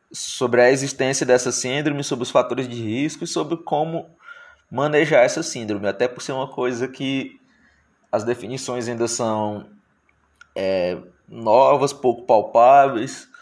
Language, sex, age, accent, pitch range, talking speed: Portuguese, male, 20-39, Brazilian, 120-140 Hz, 135 wpm